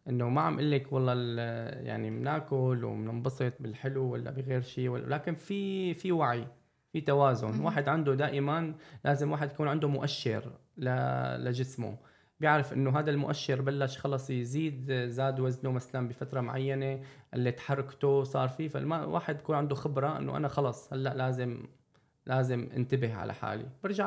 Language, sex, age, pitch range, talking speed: Arabic, male, 20-39, 125-150 Hz, 145 wpm